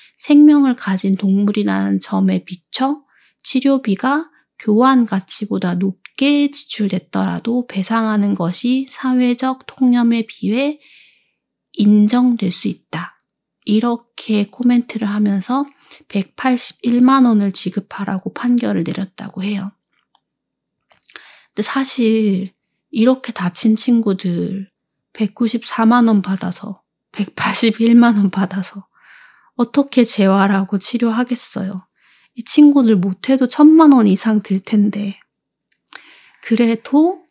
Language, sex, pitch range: Korean, female, 195-250 Hz